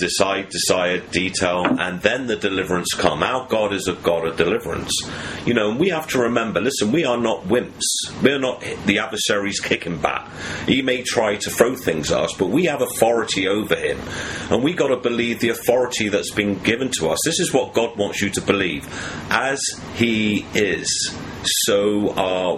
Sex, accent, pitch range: male, British, 85-110 Hz